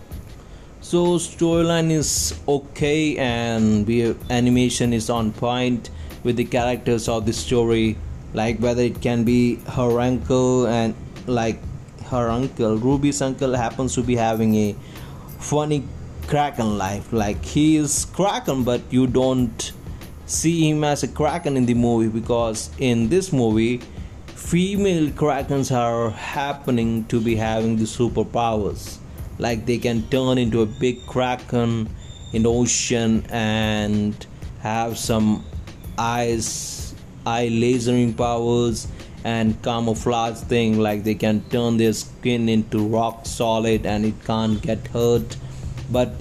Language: Hindi